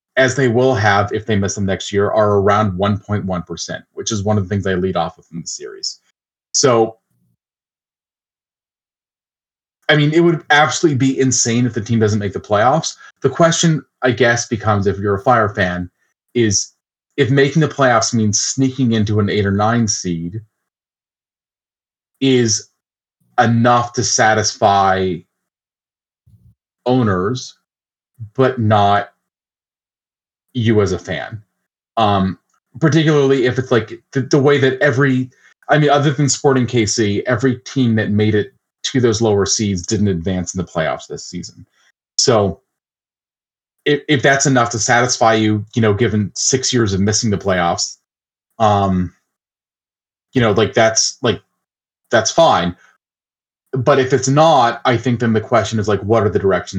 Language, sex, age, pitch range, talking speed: English, male, 30-49, 100-130 Hz, 155 wpm